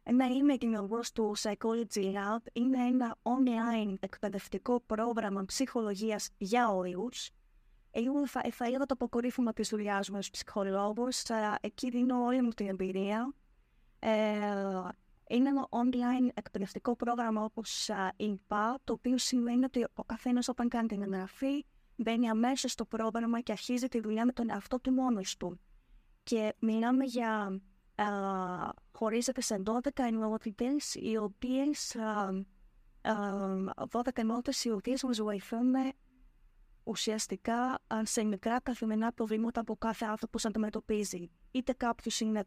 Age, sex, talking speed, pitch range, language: 20-39, female, 125 wpm, 205-245 Hz, Greek